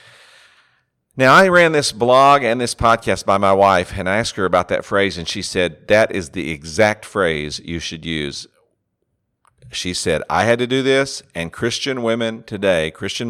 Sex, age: male, 50-69